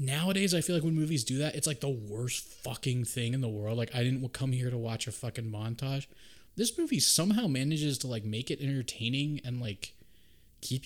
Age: 20-39